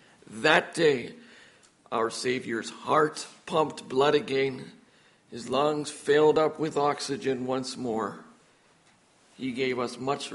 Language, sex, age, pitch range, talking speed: English, male, 50-69, 125-145 Hz, 115 wpm